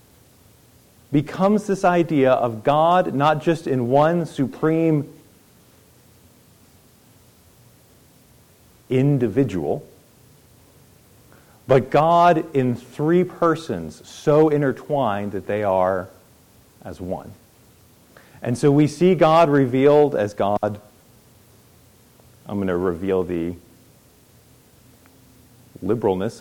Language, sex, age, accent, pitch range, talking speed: English, male, 40-59, American, 110-145 Hz, 85 wpm